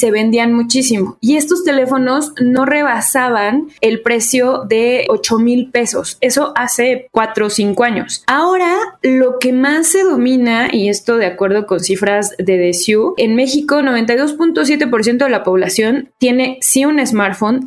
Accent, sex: Mexican, female